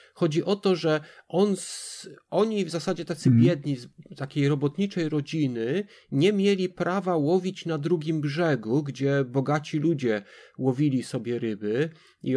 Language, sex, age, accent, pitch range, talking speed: Polish, male, 30-49, native, 135-180 Hz, 130 wpm